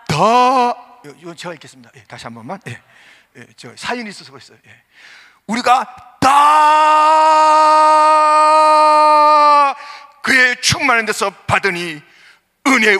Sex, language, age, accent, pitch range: male, Korean, 40-59, native, 180-300 Hz